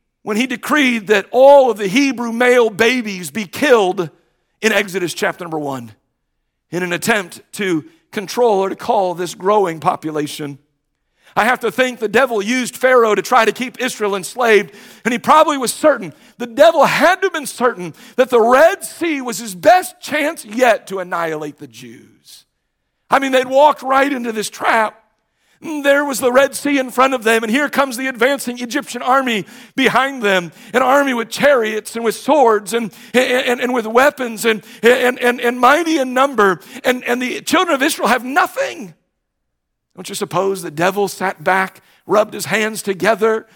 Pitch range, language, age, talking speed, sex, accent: 190-255 Hz, English, 50-69, 180 wpm, male, American